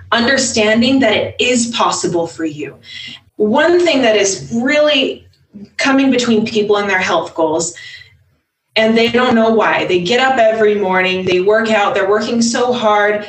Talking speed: 165 wpm